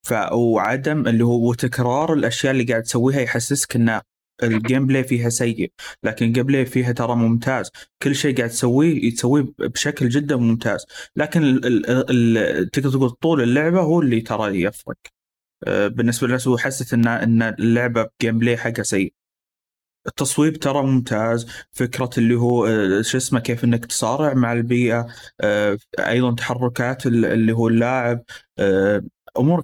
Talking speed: 140 wpm